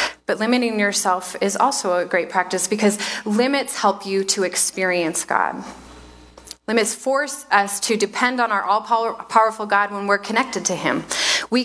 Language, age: English, 20-39